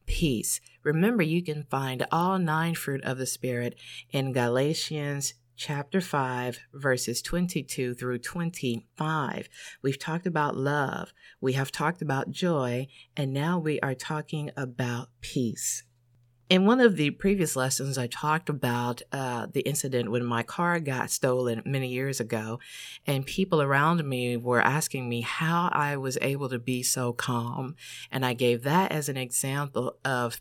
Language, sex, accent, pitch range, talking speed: English, female, American, 125-160 Hz, 155 wpm